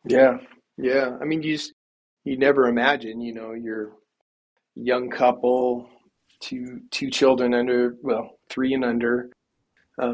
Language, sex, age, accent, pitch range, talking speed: English, male, 30-49, American, 115-135 Hz, 135 wpm